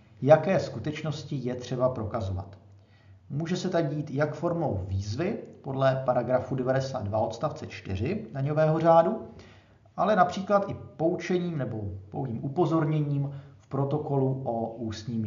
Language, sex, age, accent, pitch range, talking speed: Czech, male, 40-59, native, 110-155 Hz, 120 wpm